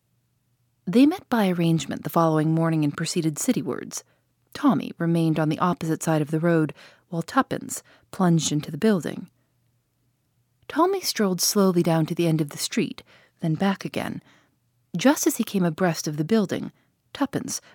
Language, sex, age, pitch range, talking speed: English, female, 40-59, 130-210 Hz, 160 wpm